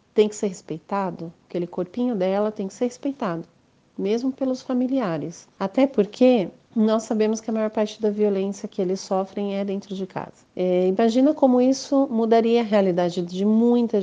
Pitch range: 185-220 Hz